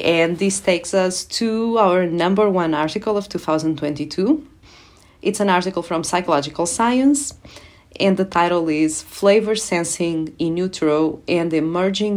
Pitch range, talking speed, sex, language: 165-215 Hz, 135 wpm, female, English